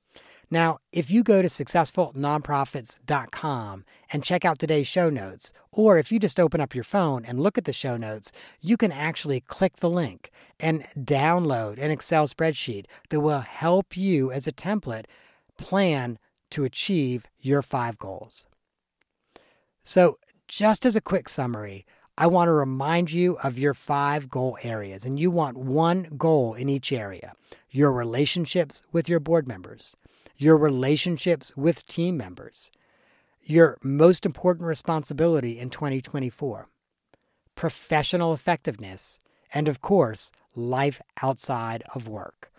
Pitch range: 130-170 Hz